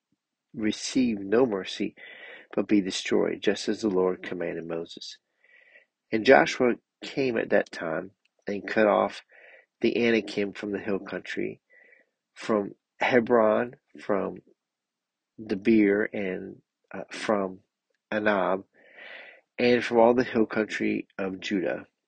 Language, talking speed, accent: English, 115 wpm, American